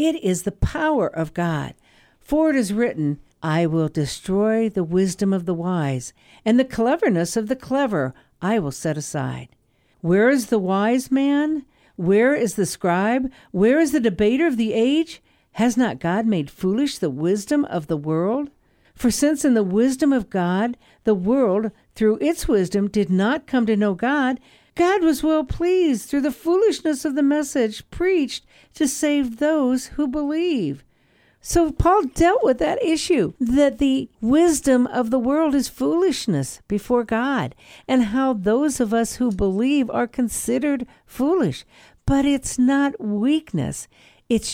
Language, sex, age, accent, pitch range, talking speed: English, female, 60-79, American, 200-285 Hz, 160 wpm